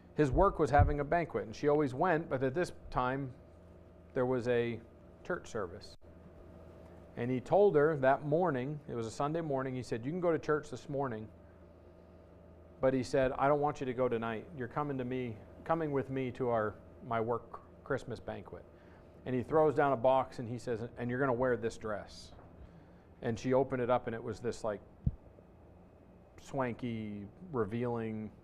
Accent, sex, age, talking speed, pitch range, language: American, male, 40-59, 190 wpm, 95-135 Hz, English